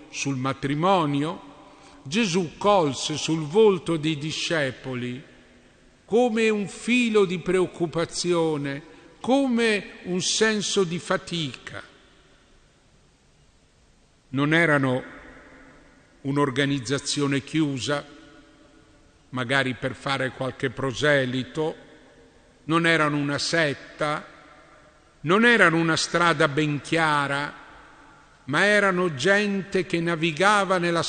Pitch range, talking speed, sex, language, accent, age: 145-200 Hz, 85 wpm, male, Italian, native, 50-69